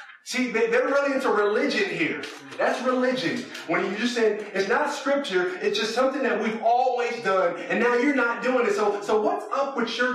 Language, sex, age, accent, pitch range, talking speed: English, male, 30-49, American, 175-240 Hz, 200 wpm